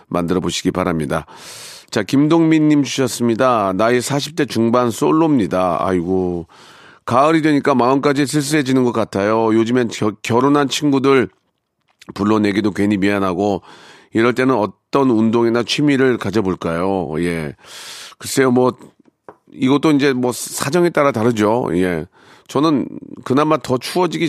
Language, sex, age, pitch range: Korean, male, 40-59, 95-130 Hz